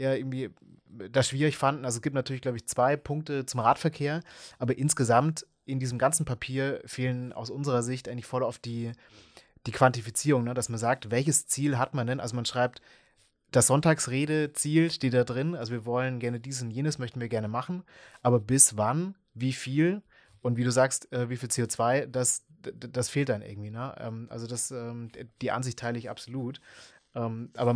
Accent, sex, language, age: German, male, German, 20-39